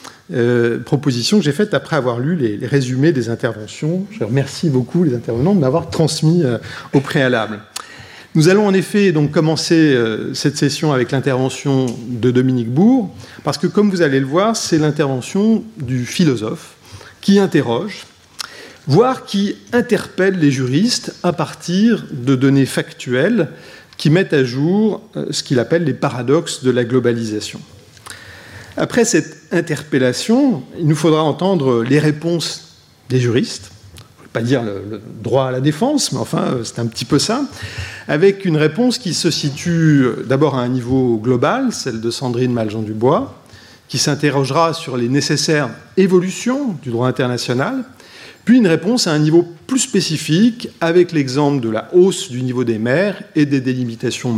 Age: 30-49